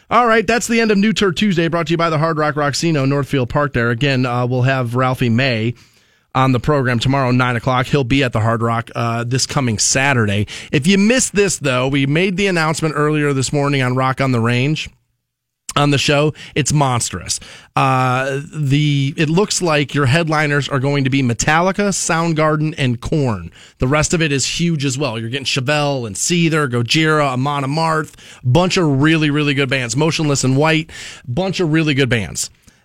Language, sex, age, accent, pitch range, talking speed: English, male, 30-49, American, 130-170 Hz, 200 wpm